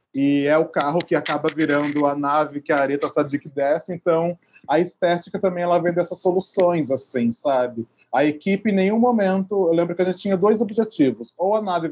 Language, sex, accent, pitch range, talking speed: Portuguese, male, Brazilian, 150-190 Hz, 200 wpm